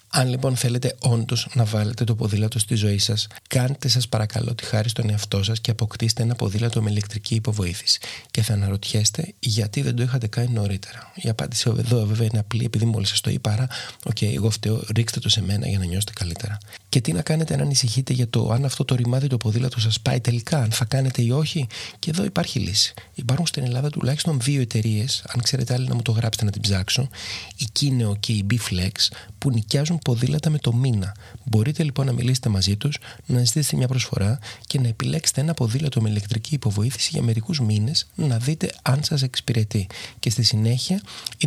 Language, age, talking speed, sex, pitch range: Greek, 30-49, 205 wpm, male, 110-130 Hz